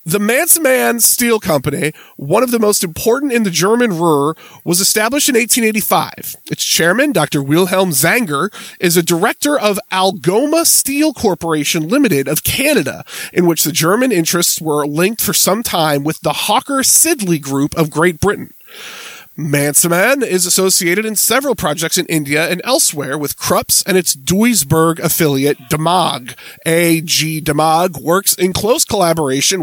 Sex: male